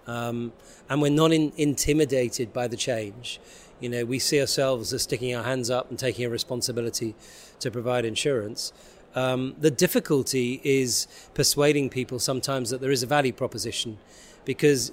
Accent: British